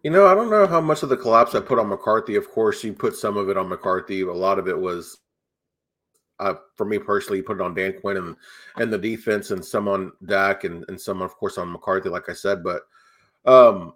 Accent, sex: American, male